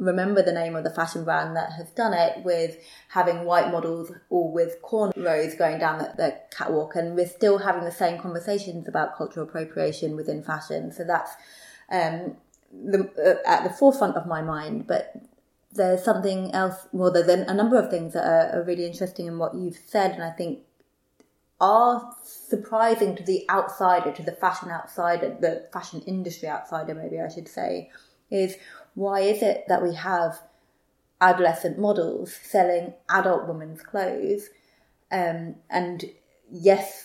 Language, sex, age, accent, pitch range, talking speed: English, female, 20-39, British, 165-195 Hz, 160 wpm